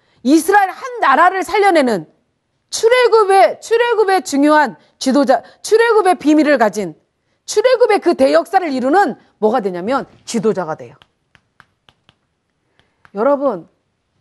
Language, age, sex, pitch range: Korean, 40-59, female, 245-360 Hz